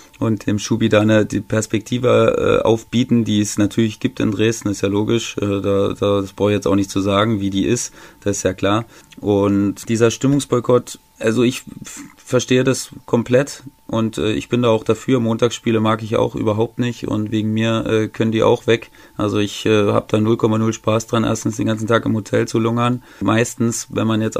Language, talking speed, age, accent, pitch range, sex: German, 190 wpm, 30-49, German, 105-120 Hz, male